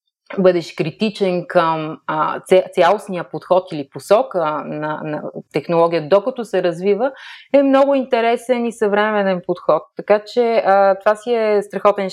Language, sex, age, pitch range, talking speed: Bulgarian, female, 30-49, 175-205 Hz, 130 wpm